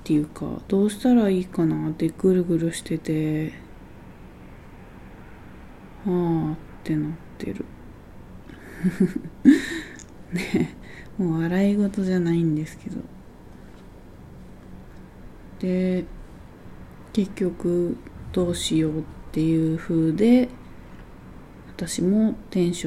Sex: female